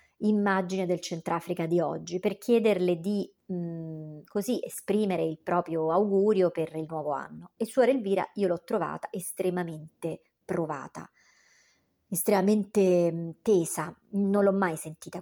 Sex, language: male, Italian